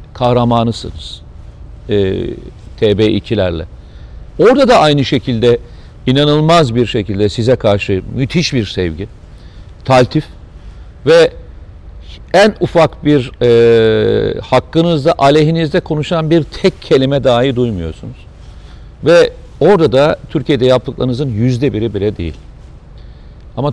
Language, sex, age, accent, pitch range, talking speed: Turkish, male, 50-69, native, 105-145 Hz, 100 wpm